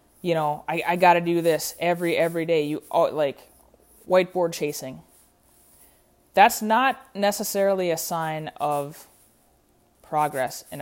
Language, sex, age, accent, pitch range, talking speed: English, female, 20-39, American, 130-205 Hz, 135 wpm